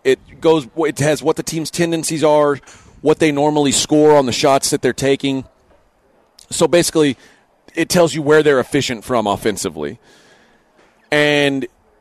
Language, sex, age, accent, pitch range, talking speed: English, male, 30-49, American, 135-160 Hz, 150 wpm